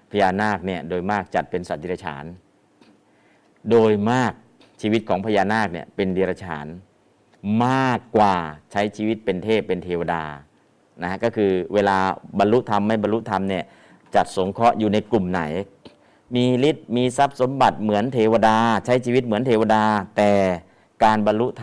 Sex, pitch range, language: male, 95-115 Hz, Thai